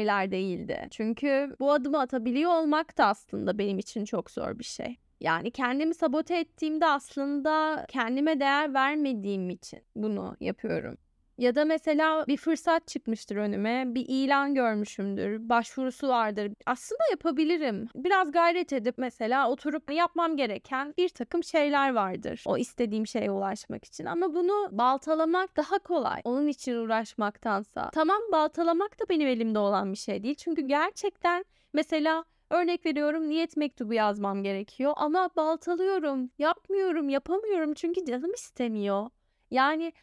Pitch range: 245-335 Hz